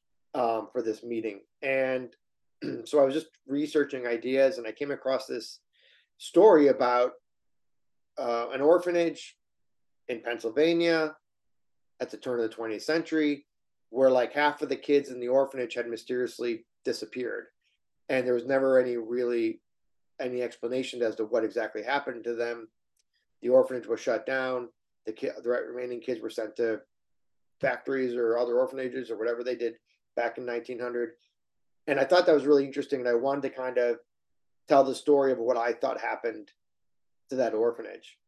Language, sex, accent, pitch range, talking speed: English, male, American, 120-145 Hz, 165 wpm